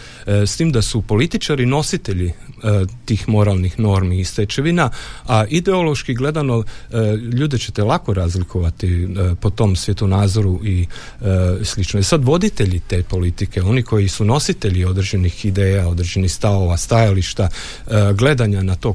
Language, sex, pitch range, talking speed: Croatian, male, 95-125 Hz, 145 wpm